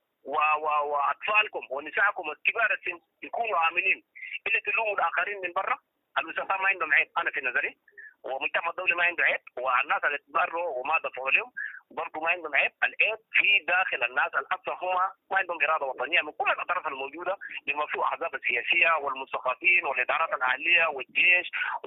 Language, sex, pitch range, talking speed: English, male, 175-245 Hz, 150 wpm